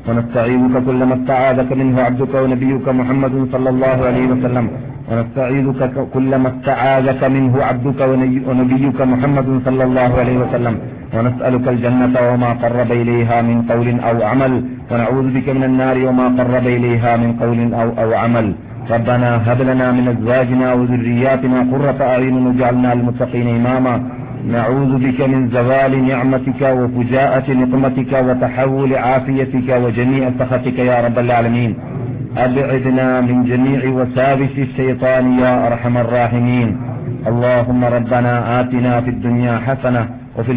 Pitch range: 120-130 Hz